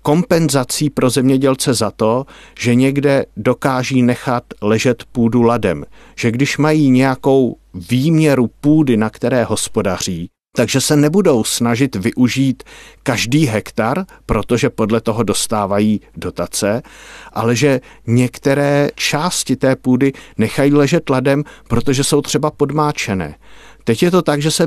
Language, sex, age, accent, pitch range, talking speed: Czech, male, 50-69, native, 120-150 Hz, 125 wpm